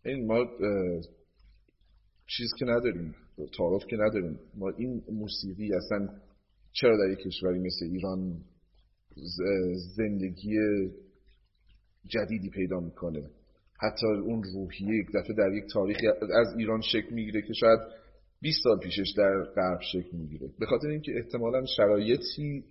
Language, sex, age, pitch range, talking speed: Persian, male, 30-49, 95-115 Hz, 125 wpm